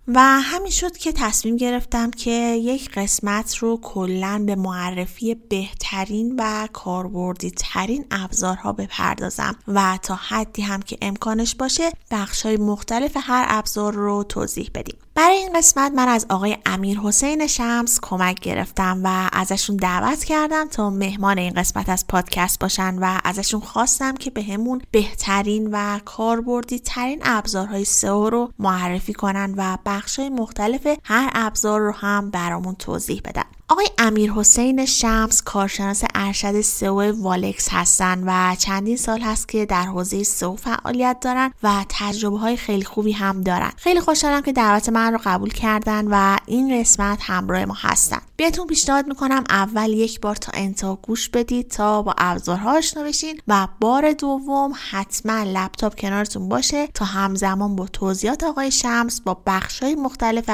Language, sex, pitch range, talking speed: Persian, female, 195-245 Hz, 150 wpm